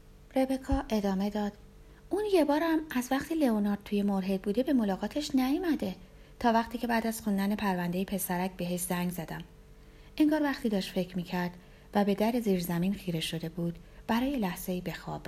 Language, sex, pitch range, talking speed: Persian, female, 180-260 Hz, 165 wpm